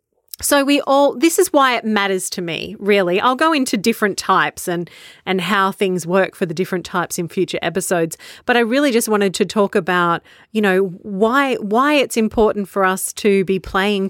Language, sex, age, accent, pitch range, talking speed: English, female, 30-49, Australian, 185-240 Hz, 200 wpm